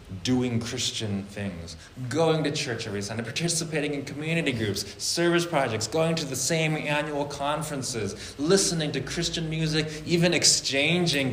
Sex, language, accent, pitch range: male, English, American, 100-140 Hz